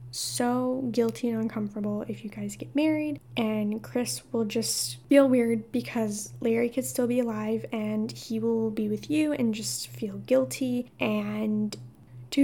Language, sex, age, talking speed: English, female, 10-29, 160 wpm